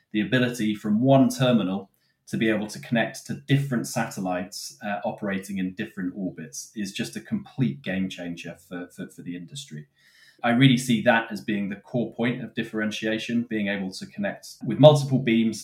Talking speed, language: 180 wpm, English